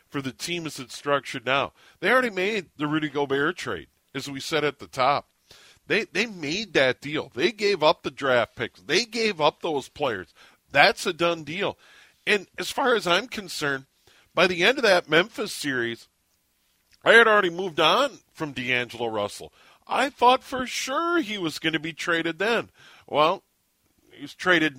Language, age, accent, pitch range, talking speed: English, 40-59, American, 130-170 Hz, 180 wpm